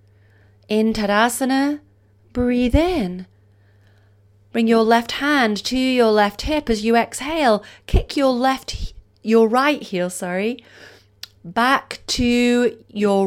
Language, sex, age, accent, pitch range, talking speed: English, female, 30-49, British, 170-245 Hz, 115 wpm